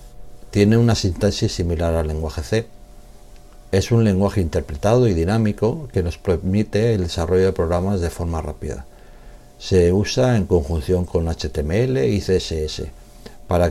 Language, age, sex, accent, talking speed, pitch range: Spanish, 60-79, male, Spanish, 140 wpm, 85-105 Hz